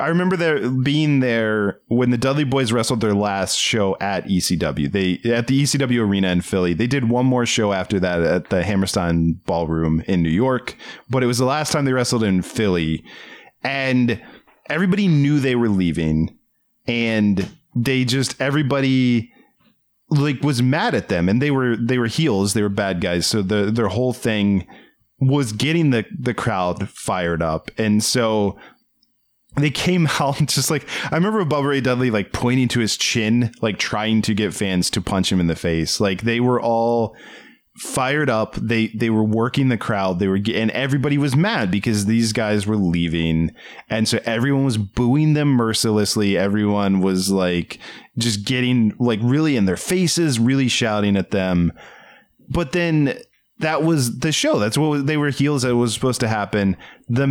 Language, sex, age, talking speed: English, male, 30-49, 180 wpm